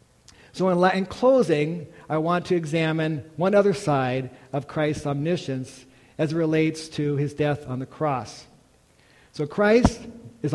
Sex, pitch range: male, 140-185 Hz